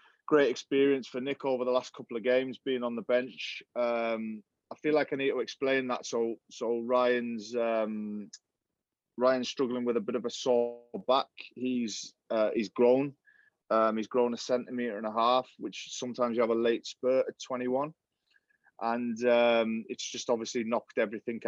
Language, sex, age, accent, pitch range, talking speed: English, male, 20-39, British, 115-125 Hz, 180 wpm